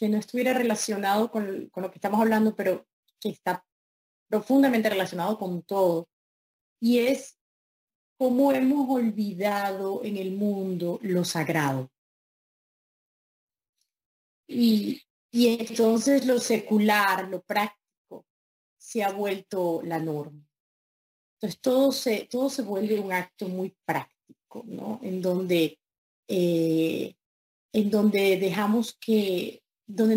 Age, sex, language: 30-49, female, Spanish